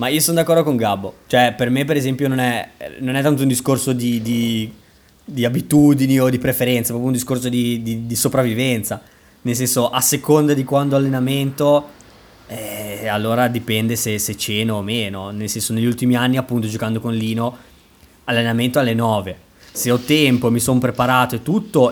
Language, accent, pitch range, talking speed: Italian, native, 110-130 Hz, 190 wpm